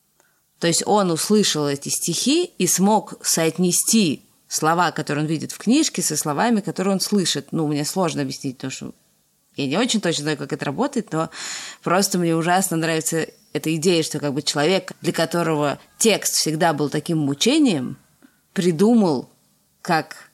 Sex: female